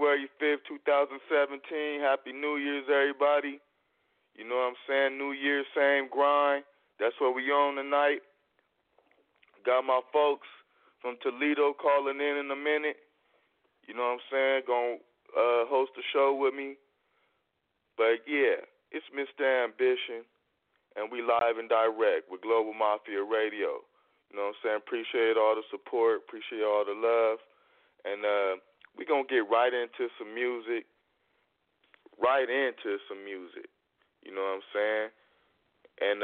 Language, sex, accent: English, male, American